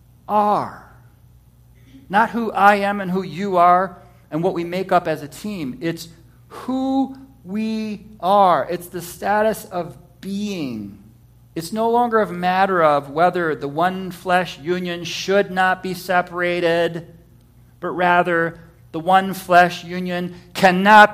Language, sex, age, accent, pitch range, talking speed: English, male, 50-69, American, 155-195 Hz, 135 wpm